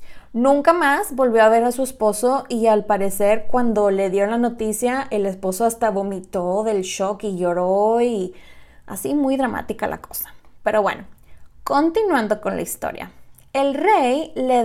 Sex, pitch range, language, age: female, 205-265 Hz, Spanish, 20-39